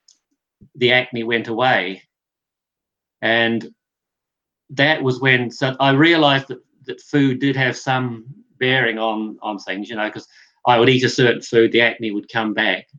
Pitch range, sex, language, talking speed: 110-130 Hz, male, English, 160 wpm